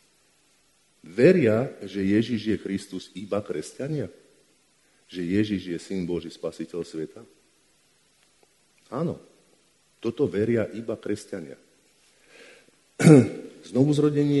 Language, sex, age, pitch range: Slovak, male, 50-69, 95-130 Hz